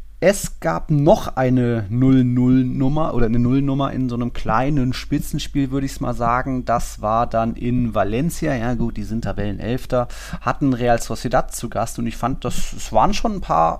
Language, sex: German, male